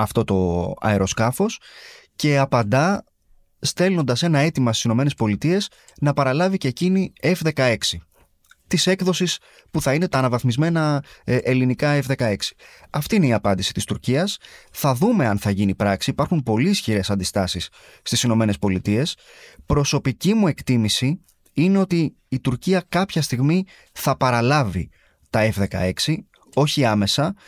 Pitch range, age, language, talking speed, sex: 105-150 Hz, 20-39, Greek, 125 wpm, male